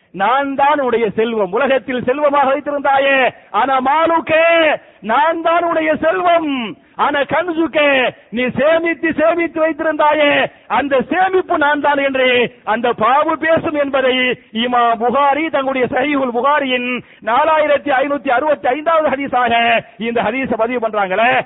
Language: English